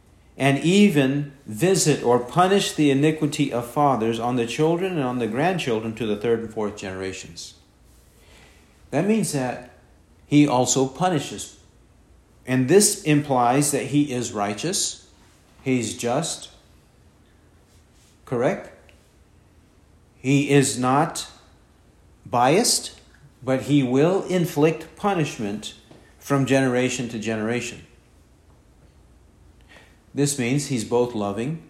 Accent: American